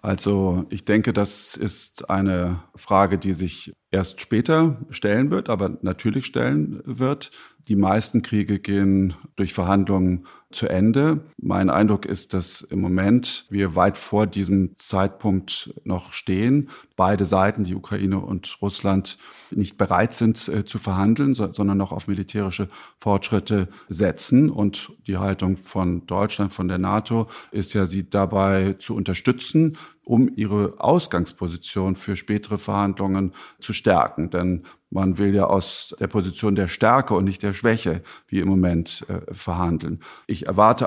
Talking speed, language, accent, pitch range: 145 wpm, German, German, 95-105 Hz